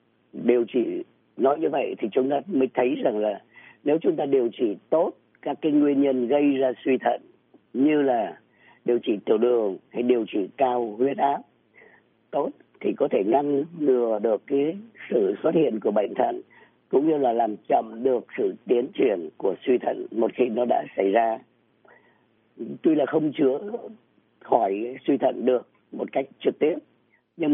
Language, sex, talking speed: Vietnamese, female, 180 wpm